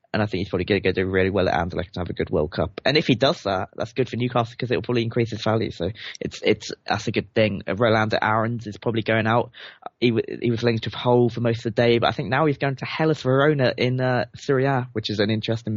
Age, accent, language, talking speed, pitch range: 20-39, British, English, 285 wpm, 100-120 Hz